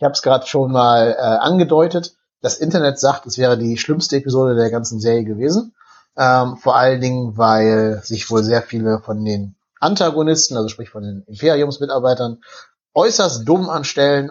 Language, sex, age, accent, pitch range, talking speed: German, male, 30-49, German, 110-140 Hz, 170 wpm